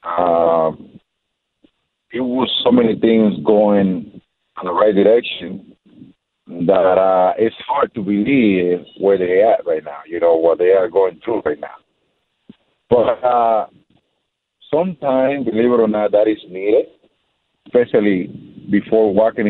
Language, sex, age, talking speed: English, male, 50-69, 140 wpm